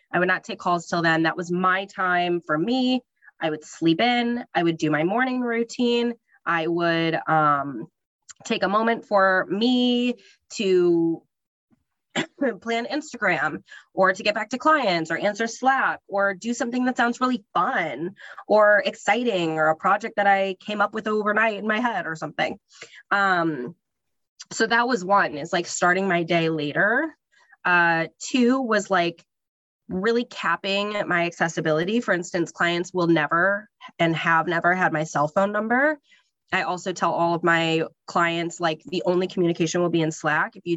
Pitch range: 165-220 Hz